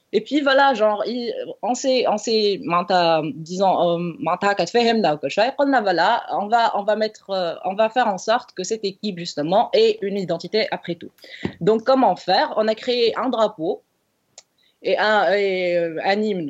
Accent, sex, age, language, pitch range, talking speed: French, female, 20-39, English, 170-220 Hz, 140 wpm